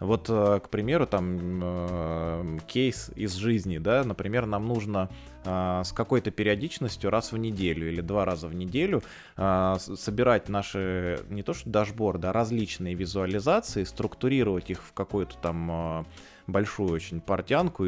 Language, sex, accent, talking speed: Russian, male, native, 130 wpm